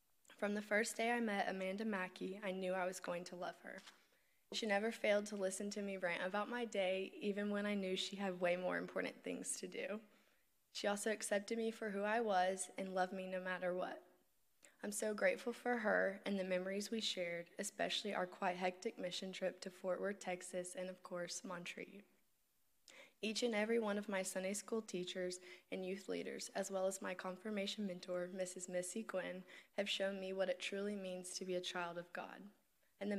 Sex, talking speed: female, 205 wpm